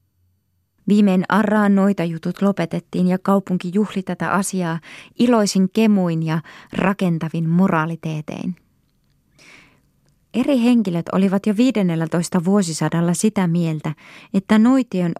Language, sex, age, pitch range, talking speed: Finnish, female, 20-39, 165-195 Hz, 95 wpm